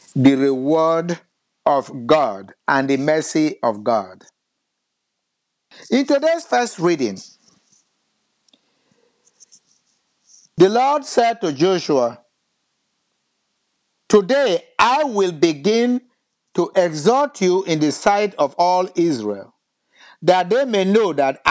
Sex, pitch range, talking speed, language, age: male, 160-245 Hz, 100 wpm, English, 50-69